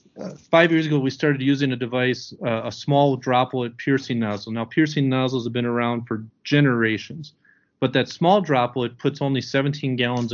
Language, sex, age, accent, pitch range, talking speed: English, male, 40-59, American, 120-145 Hz, 180 wpm